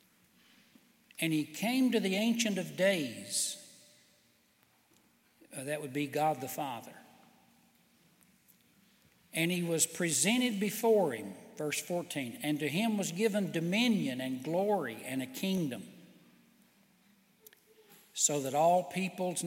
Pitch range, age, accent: 150-210 Hz, 60-79, American